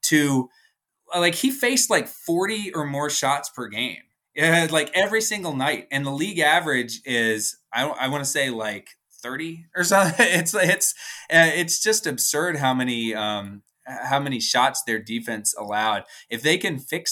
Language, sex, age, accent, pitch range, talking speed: English, male, 20-39, American, 115-160 Hz, 170 wpm